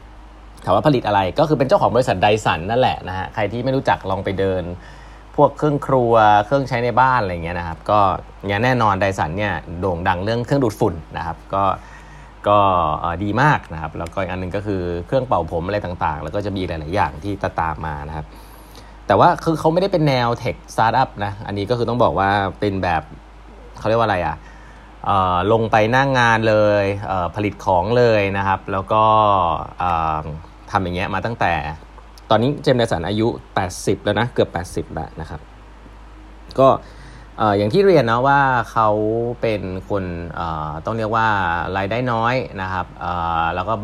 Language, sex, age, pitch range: Thai, male, 30-49, 85-115 Hz